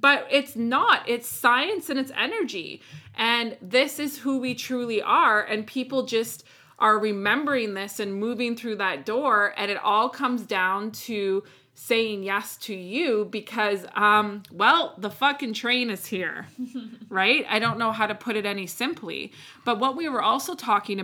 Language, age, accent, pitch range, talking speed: English, 20-39, American, 190-235 Hz, 170 wpm